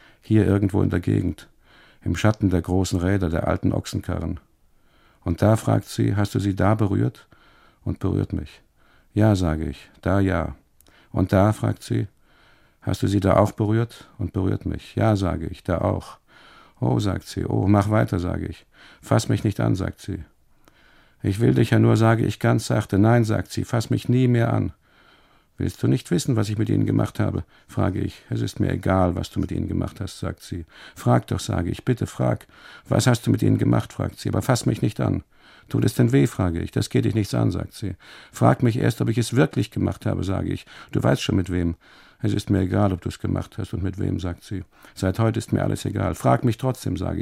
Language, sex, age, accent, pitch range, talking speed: German, male, 50-69, German, 95-115 Hz, 220 wpm